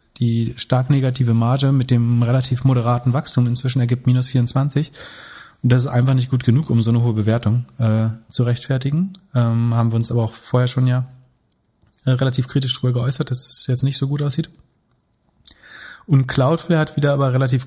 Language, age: German, 30-49